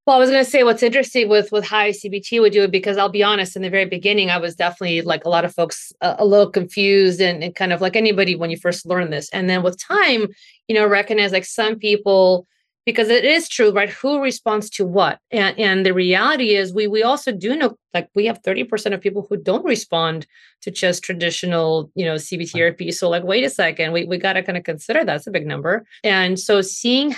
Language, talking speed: English, 245 wpm